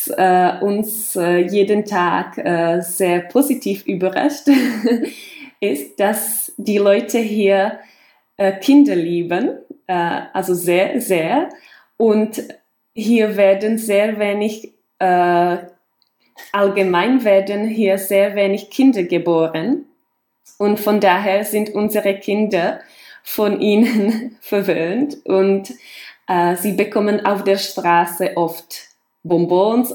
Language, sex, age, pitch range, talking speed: Czech, female, 20-39, 190-235 Hz, 90 wpm